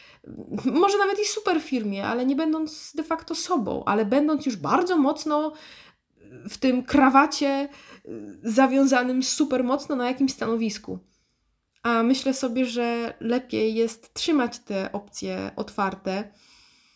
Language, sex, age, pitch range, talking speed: Polish, female, 20-39, 220-270 Hz, 125 wpm